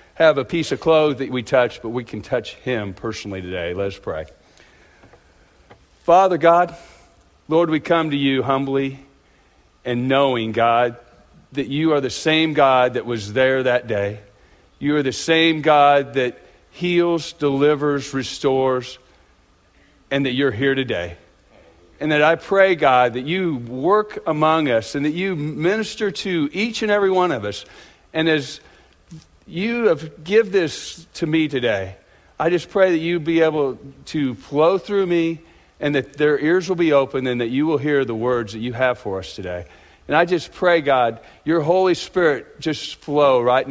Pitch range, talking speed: 115-160 Hz, 175 wpm